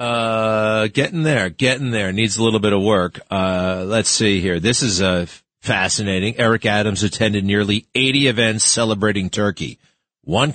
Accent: American